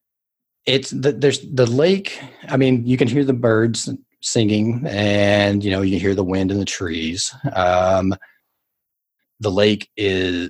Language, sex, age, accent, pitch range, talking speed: English, male, 30-49, American, 100-130 Hz, 160 wpm